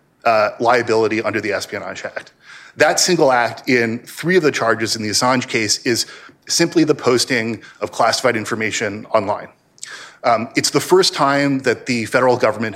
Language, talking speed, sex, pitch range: English, 165 wpm, male, 115-140 Hz